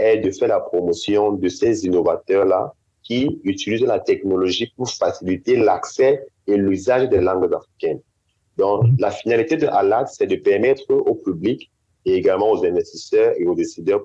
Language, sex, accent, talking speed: English, male, French, 160 wpm